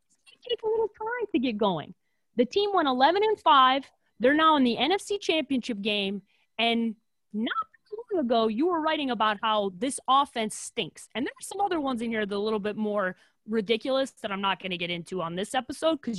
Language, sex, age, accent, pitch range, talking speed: English, female, 30-49, American, 200-320 Hz, 220 wpm